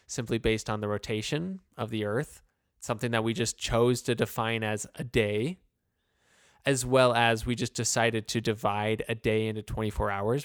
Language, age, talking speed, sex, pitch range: English, 20-39, 180 wpm, male, 110-130 Hz